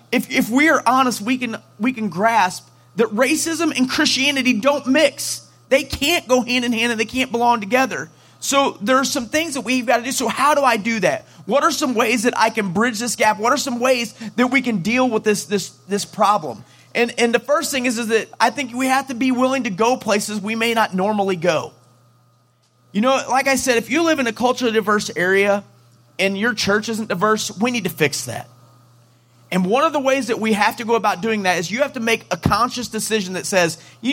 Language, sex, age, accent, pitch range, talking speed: English, male, 30-49, American, 180-255 Hz, 240 wpm